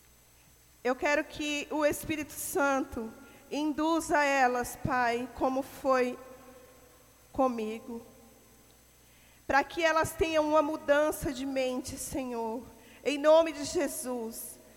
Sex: female